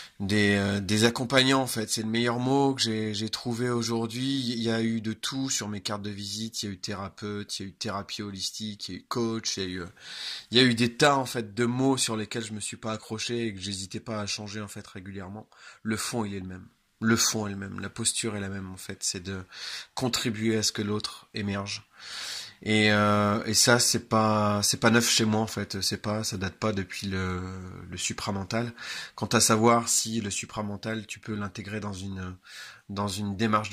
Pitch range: 100-115 Hz